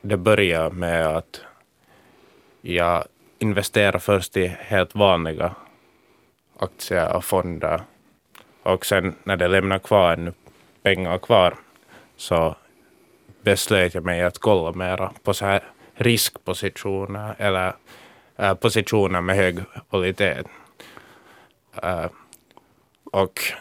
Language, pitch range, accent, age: Swedish, 90-105 Hz, Finnish, 20-39